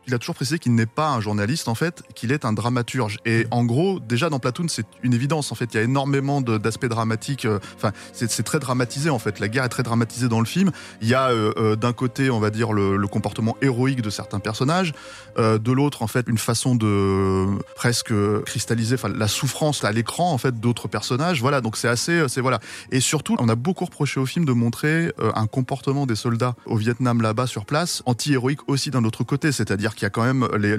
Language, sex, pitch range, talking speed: French, male, 105-135 Hz, 240 wpm